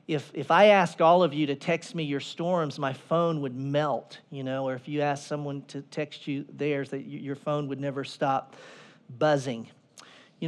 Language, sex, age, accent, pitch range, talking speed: English, male, 40-59, American, 145-180 Hz, 205 wpm